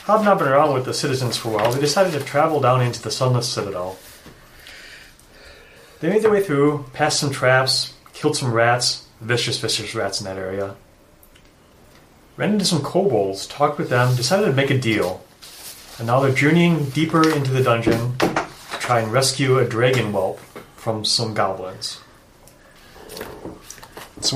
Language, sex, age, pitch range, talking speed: English, male, 30-49, 110-135 Hz, 160 wpm